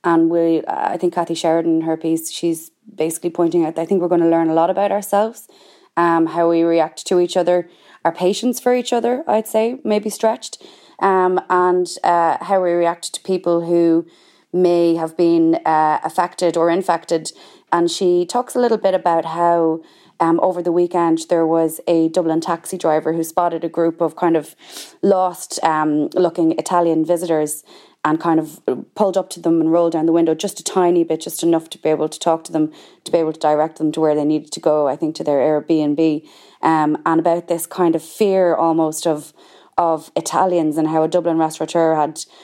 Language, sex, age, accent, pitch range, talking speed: English, female, 20-39, Irish, 160-185 Hz, 205 wpm